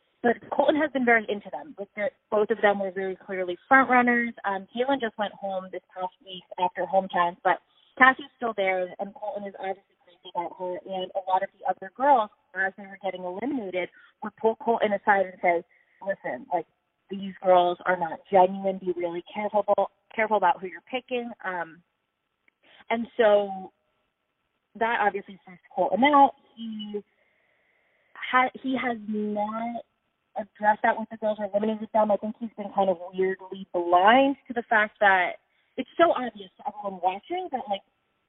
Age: 30-49